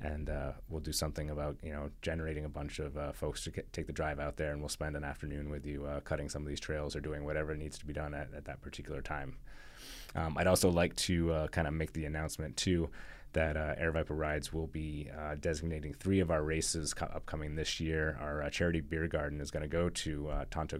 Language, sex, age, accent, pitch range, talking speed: English, male, 30-49, American, 70-80 Hz, 250 wpm